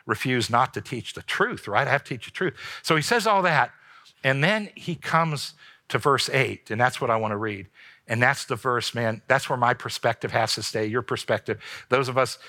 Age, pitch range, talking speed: 60-79, 125-170 Hz, 235 wpm